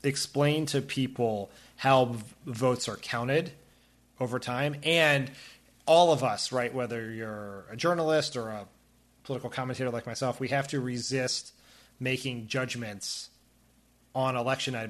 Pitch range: 115-140 Hz